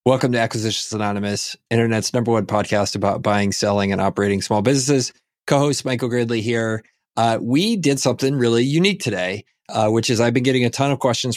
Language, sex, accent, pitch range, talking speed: English, male, American, 105-135 Hz, 190 wpm